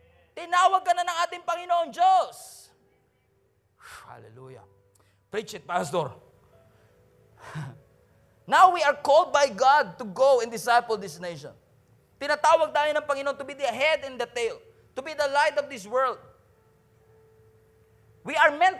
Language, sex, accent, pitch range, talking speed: English, male, Filipino, 185-285 Hz, 135 wpm